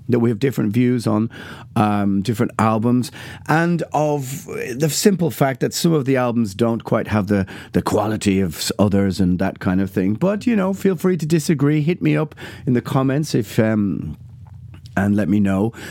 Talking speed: 190 wpm